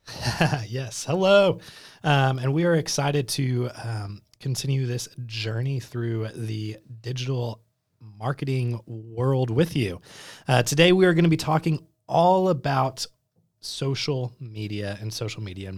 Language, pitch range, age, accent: English, 110-145 Hz, 20-39, American